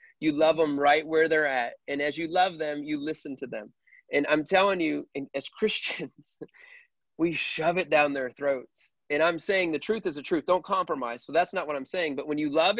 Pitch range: 145-195 Hz